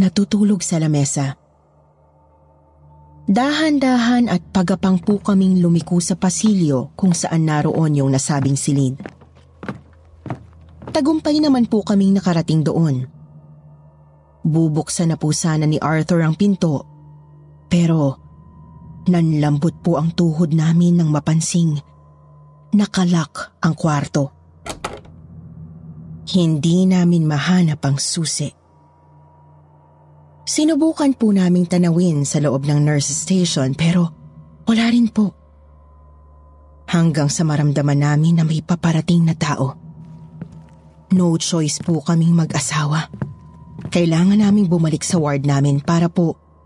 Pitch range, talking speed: 130-175 Hz, 105 wpm